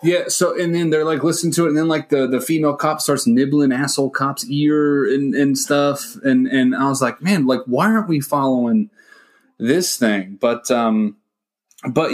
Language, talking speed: English, 200 wpm